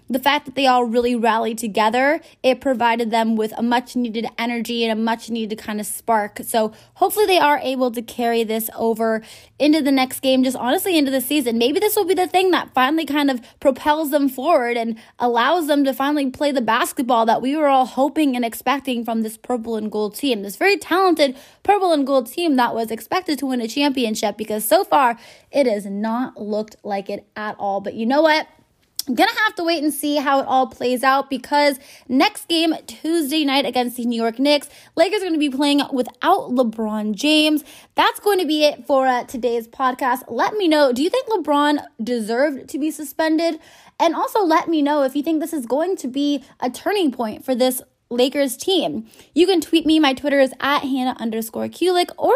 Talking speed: 215 wpm